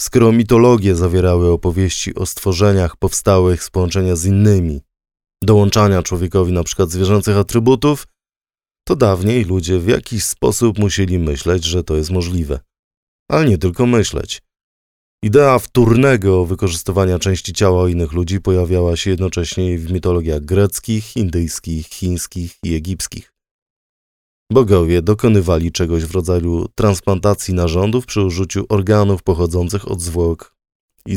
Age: 20-39